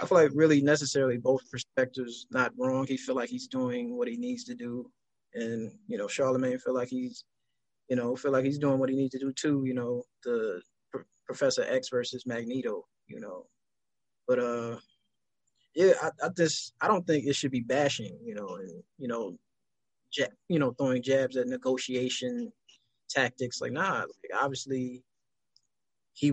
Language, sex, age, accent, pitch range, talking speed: English, male, 20-39, American, 125-155 Hz, 180 wpm